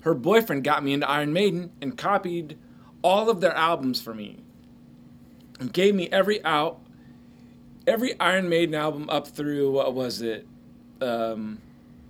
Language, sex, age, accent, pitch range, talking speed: English, male, 30-49, American, 135-185 Hz, 150 wpm